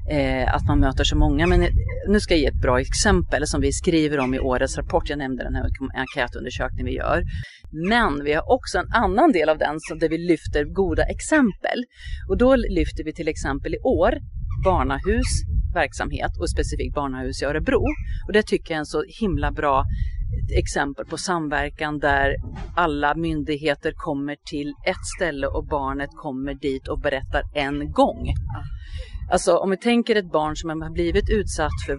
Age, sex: 40-59, female